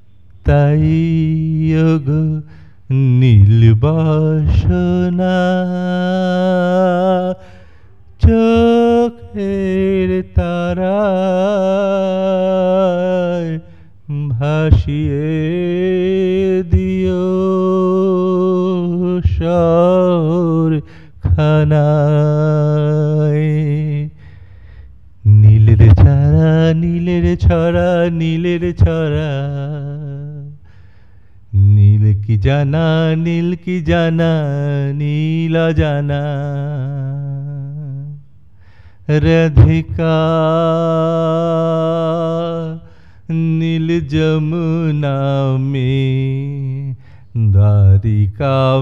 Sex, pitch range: male, 135-170 Hz